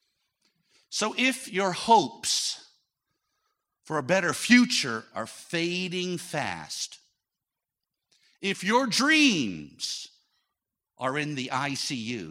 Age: 50-69